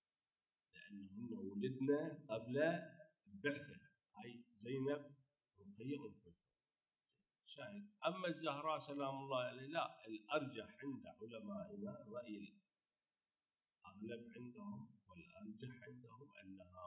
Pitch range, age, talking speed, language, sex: 125-175 Hz, 50-69, 80 wpm, Arabic, male